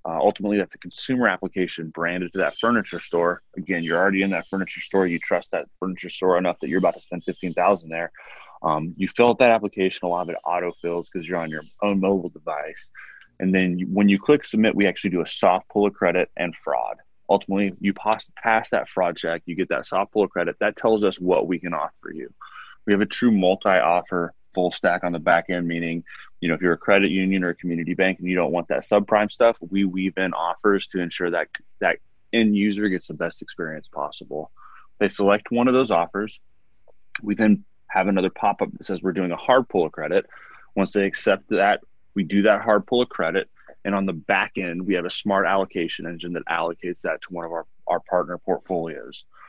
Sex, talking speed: male, 220 wpm